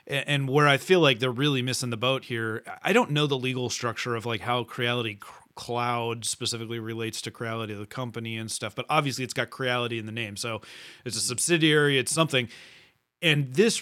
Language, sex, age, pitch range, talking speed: English, male, 30-49, 125-150 Hz, 200 wpm